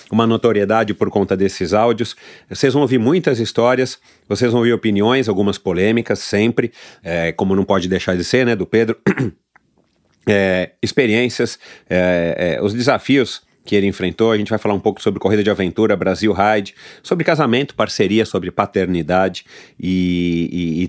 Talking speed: 165 wpm